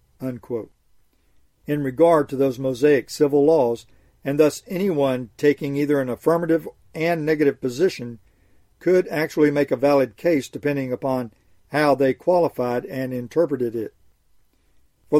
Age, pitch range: 50-69, 120-150 Hz